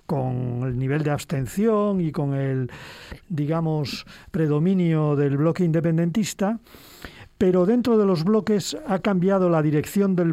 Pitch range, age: 150-195 Hz, 40-59